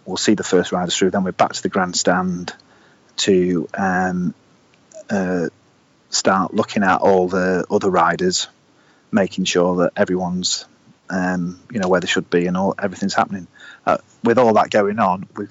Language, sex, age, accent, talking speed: English, male, 30-49, British, 170 wpm